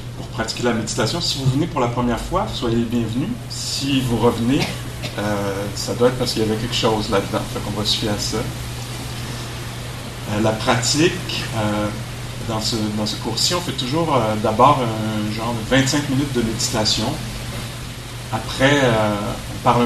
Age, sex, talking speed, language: 40-59, male, 170 wpm, English